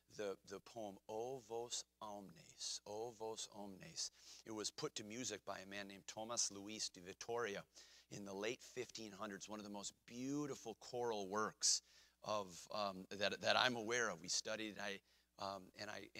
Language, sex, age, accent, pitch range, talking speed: English, male, 40-59, American, 100-155 Hz, 170 wpm